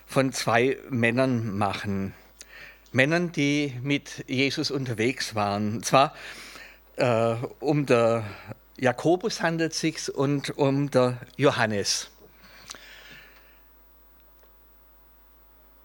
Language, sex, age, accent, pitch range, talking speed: German, male, 50-69, German, 115-160 Hz, 85 wpm